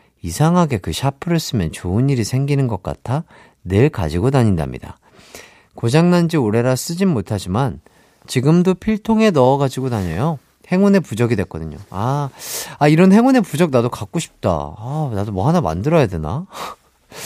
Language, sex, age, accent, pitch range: Korean, male, 40-59, native, 105-165 Hz